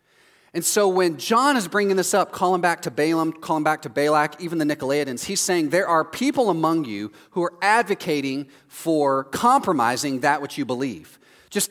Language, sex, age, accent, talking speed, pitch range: English, male, 30-49, American, 185 wpm, 150-210 Hz